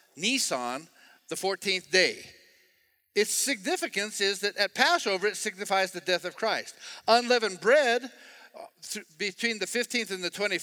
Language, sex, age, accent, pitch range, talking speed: English, male, 50-69, American, 180-240 Hz, 130 wpm